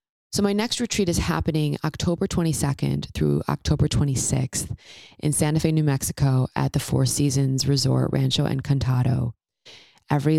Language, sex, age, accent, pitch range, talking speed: English, female, 20-39, American, 130-155 Hz, 140 wpm